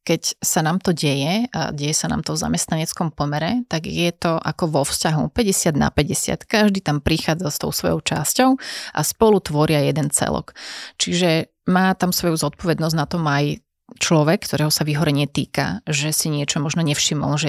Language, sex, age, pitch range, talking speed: Slovak, female, 30-49, 150-170 Hz, 185 wpm